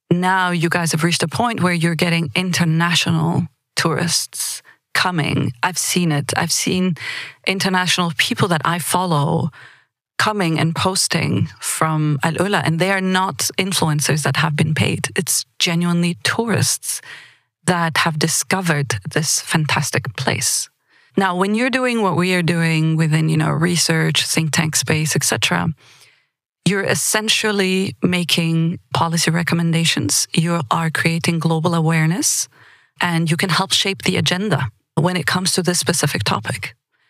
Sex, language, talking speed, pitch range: female, English, 140 wpm, 155-185 Hz